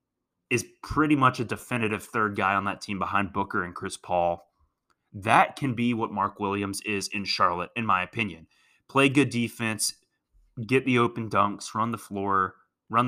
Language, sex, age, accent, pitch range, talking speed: English, male, 20-39, American, 95-120 Hz, 175 wpm